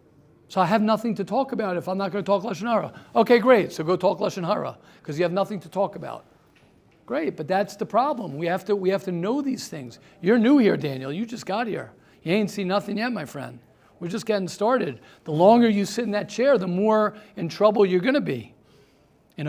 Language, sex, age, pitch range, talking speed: English, male, 50-69, 165-220 Hz, 235 wpm